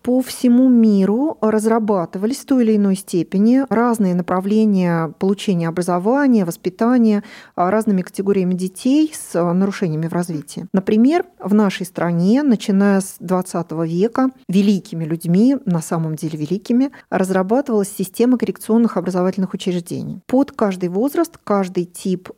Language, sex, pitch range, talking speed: Russian, female, 180-235 Hz, 120 wpm